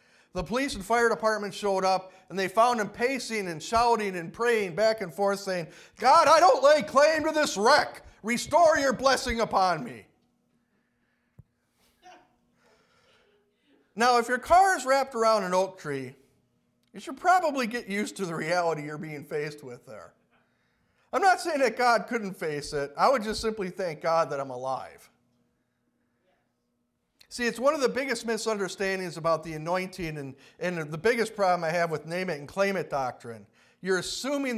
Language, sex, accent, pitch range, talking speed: English, male, American, 155-225 Hz, 165 wpm